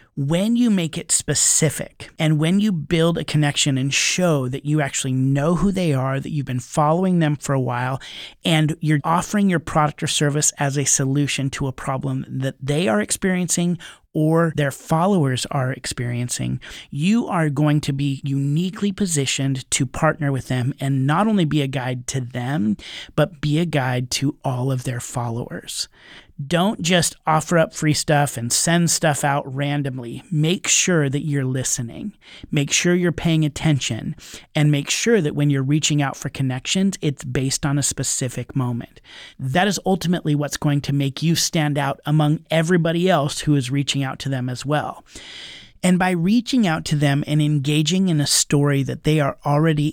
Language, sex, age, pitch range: English, male, 30-49, 135-165 Hz